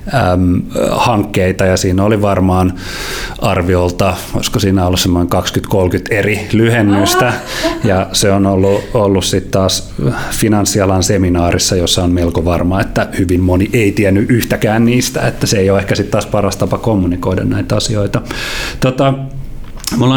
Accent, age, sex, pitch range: native, 30-49, male, 90-115 Hz